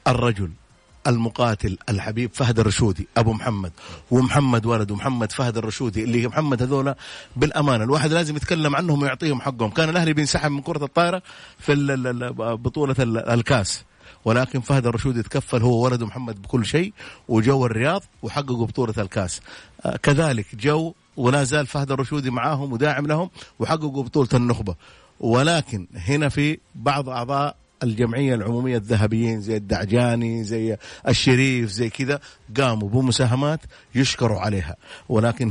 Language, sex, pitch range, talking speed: Arabic, male, 115-145 Hz, 125 wpm